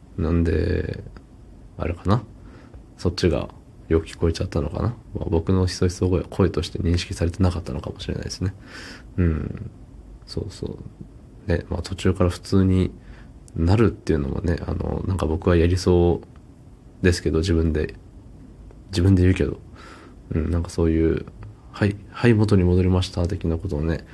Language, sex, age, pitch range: Japanese, male, 20-39, 85-105 Hz